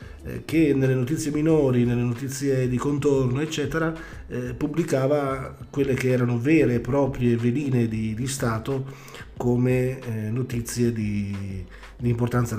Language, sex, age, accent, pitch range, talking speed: Italian, male, 40-59, native, 120-140 Hz, 130 wpm